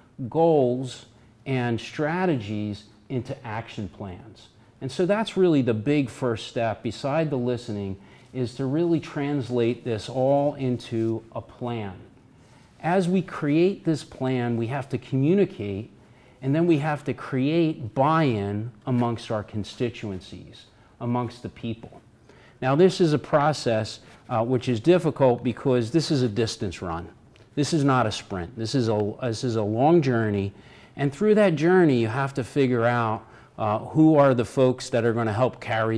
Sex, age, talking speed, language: male, 40-59, 160 wpm, English